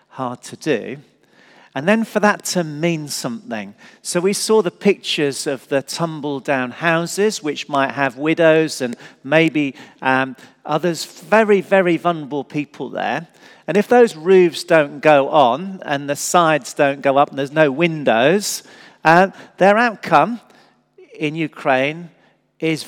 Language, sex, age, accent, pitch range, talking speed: English, male, 40-59, British, 140-180 Hz, 145 wpm